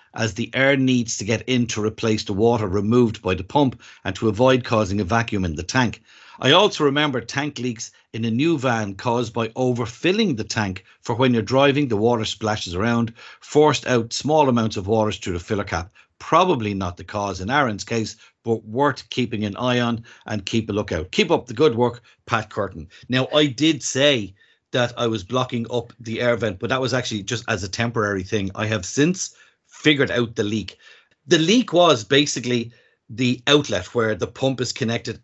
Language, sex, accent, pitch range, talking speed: English, male, Irish, 110-135 Hz, 205 wpm